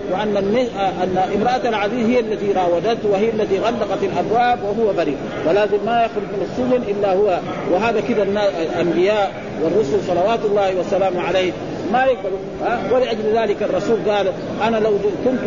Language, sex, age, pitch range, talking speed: Arabic, male, 50-69, 190-225 Hz, 155 wpm